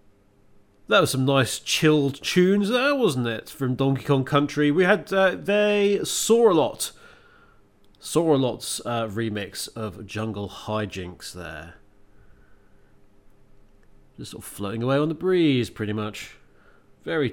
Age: 30-49